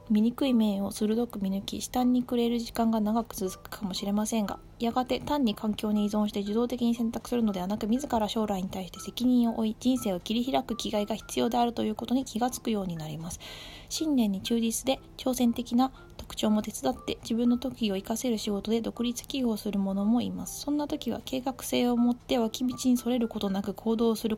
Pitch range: 200-245 Hz